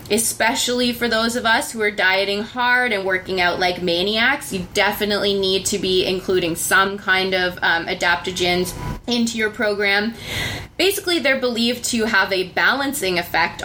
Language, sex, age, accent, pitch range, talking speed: English, female, 20-39, American, 190-245 Hz, 160 wpm